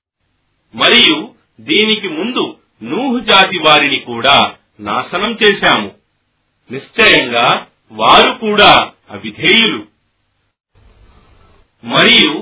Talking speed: 55 wpm